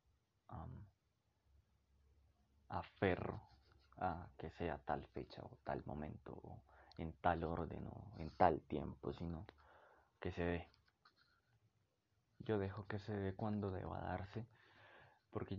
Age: 20-39